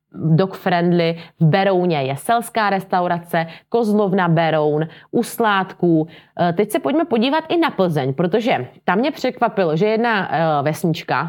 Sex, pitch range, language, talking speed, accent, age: female, 165-200 Hz, Czech, 120 wpm, native, 30-49